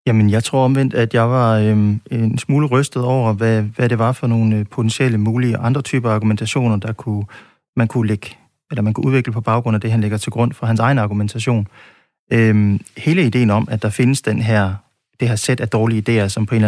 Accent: native